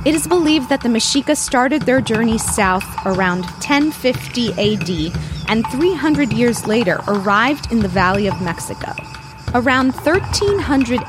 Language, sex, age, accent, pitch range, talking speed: English, female, 20-39, American, 195-280 Hz, 135 wpm